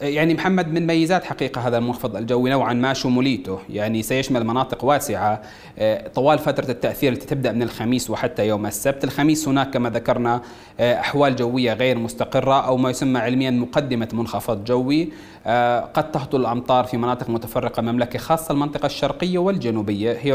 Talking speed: 155 wpm